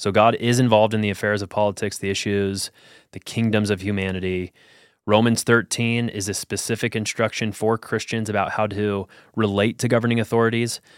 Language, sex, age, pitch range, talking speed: English, male, 20-39, 100-115 Hz, 165 wpm